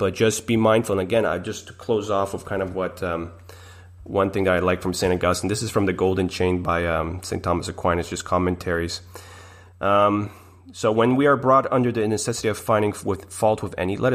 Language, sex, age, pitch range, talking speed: English, male, 30-49, 90-110 Hz, 215 wpm